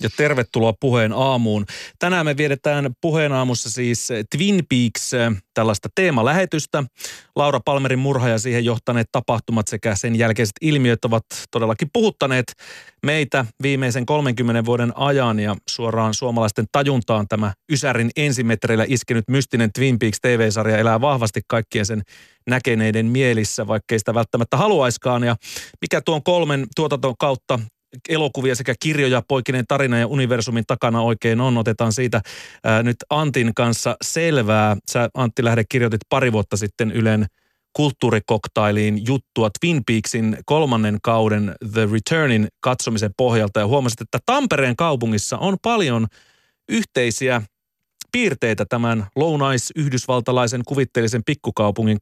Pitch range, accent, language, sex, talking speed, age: 110-135 Hz, native, Finnish, male, 125 wpm, 30-49